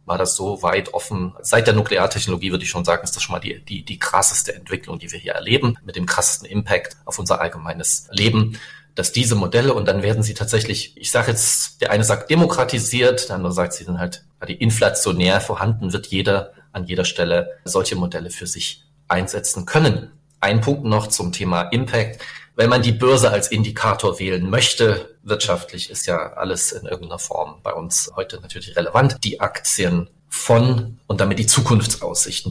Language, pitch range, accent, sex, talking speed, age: German, 90-115 Hz, German, male, 185 wpm, 40-59